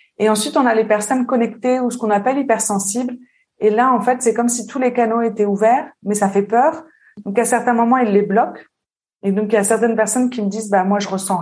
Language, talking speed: French, 265 wpm